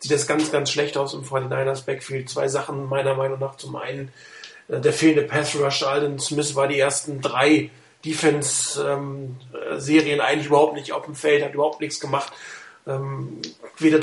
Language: German